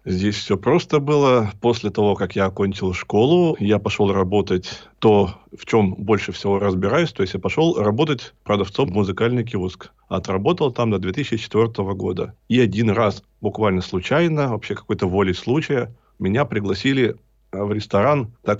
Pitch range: 95-115 Hz